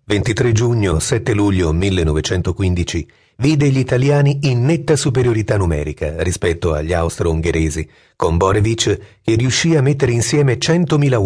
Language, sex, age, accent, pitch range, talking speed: Italian, male, 40-59, native, 90-140 Hz, 115 wpm